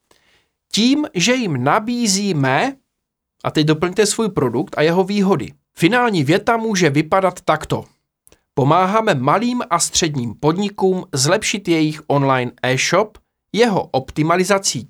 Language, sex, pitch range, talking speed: Czech, male, 145-210 Hz, 115 wpm